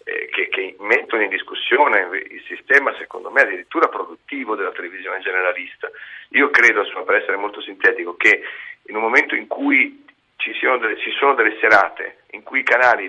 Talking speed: 160 wpm